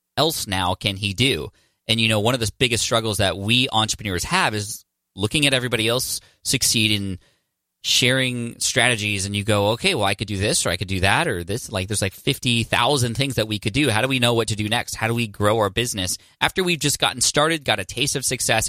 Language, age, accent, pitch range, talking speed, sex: English, 20-39, American, 100-125 Hz, 240 wpm, male